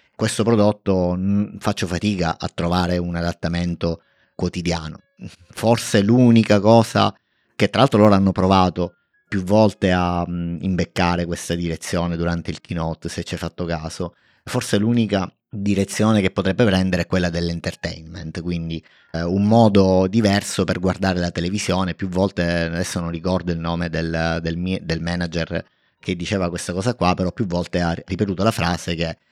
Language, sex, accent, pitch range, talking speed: Italian, male, native, 85-100 Hz, 150 wpm